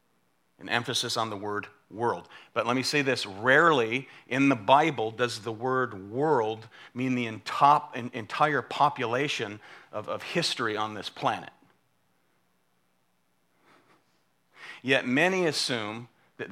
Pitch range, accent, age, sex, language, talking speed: 110-135 Hz, American, 40-59, male, English, 120 wpm